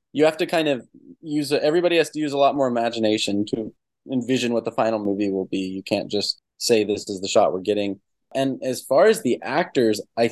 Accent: American